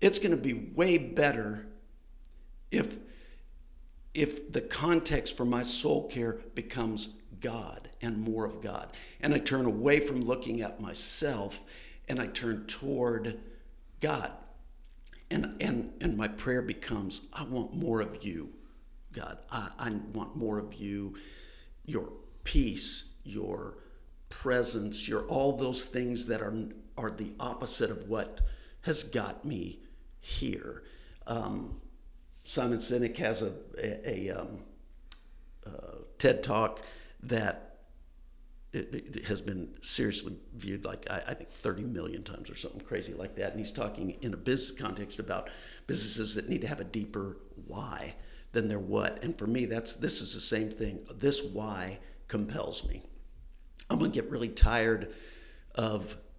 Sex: male